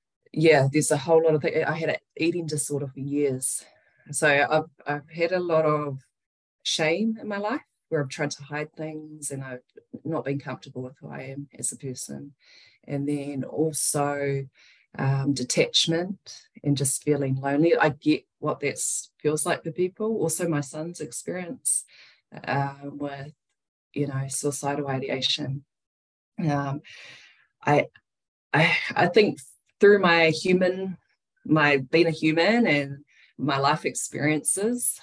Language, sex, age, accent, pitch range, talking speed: English, female, 20-39, Australian, 140-155 Hz, 145 wpm